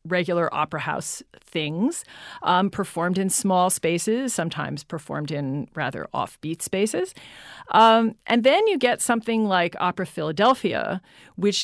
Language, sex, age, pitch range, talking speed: English, female, 40-59, 165-220 Hz, 130 wpm